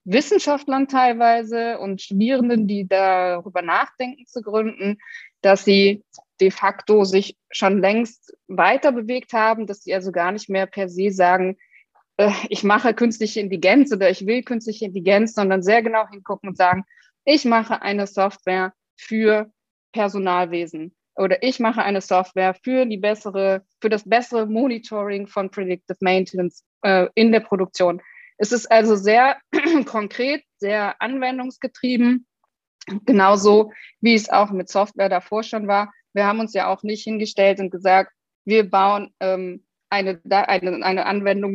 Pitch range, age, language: 190-220 Hz, 20-39, German